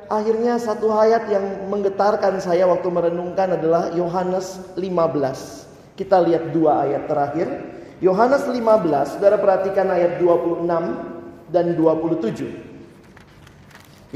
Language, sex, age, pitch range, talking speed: Indonesian, male, 40-59, 175-240 Hz, 100 wpm